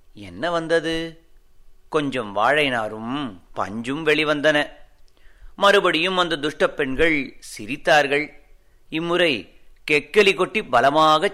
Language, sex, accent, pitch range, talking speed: Tamil, male, native, 140-190 Hz, 80 wpm